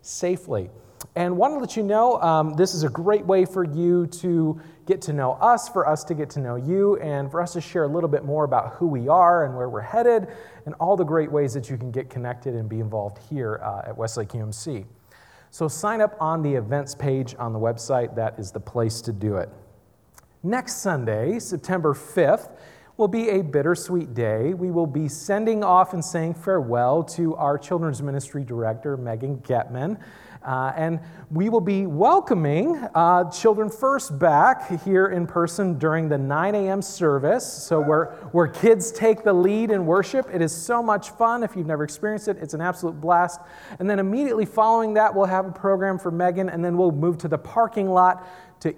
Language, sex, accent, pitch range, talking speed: English, male, American, 140-195 Hz, 200 wpm